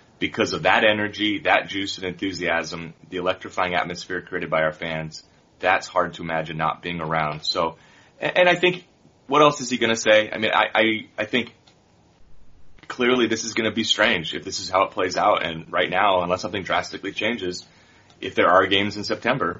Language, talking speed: English, 200 wpm